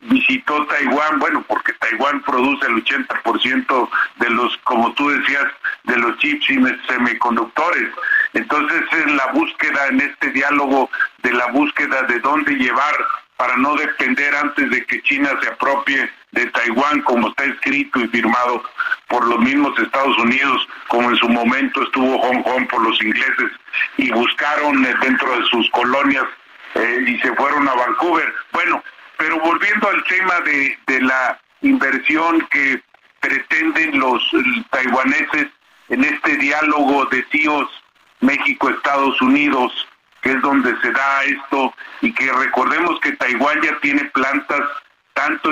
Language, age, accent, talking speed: Spanish, 50-69, Mexican, 140 wpm